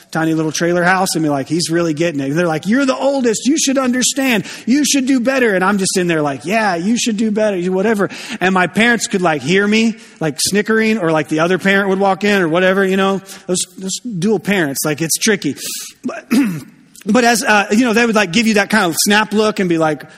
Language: English